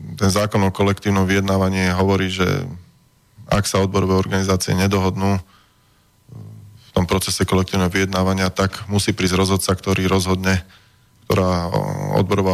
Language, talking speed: Slovak, 120 wpm